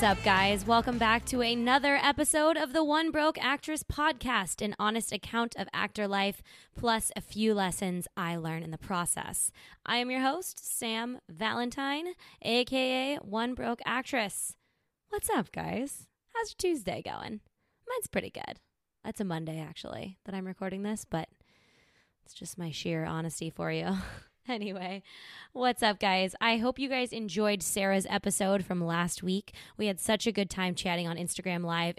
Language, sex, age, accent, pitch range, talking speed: English, female, 20-39, American, 180-250 Hz, 165 wpm